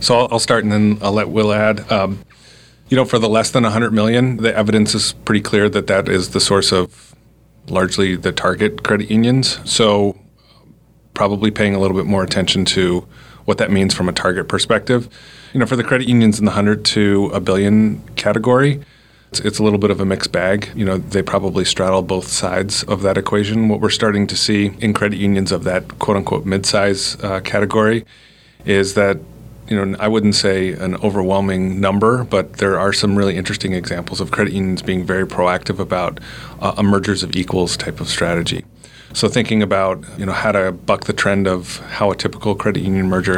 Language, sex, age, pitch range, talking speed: English, male, 30-49, 95-110 Hz, 200 wpm